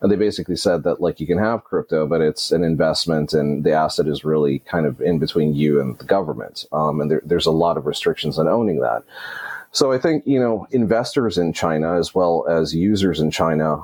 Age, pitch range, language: 30-49, 75-95 Hz, English